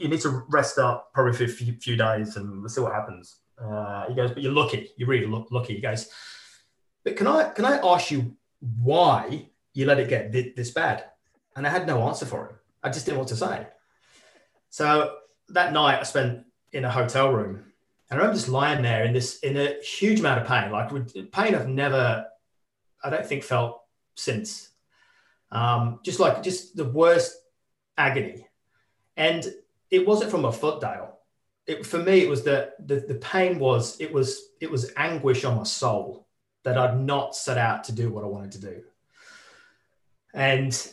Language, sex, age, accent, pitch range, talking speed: English, male, 30-49, British, 115-140 Hz, 190 wpm